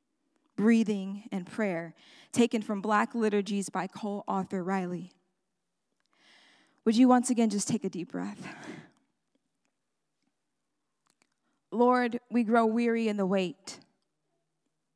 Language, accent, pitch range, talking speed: English, American, 205-255 Hz, 105 wpm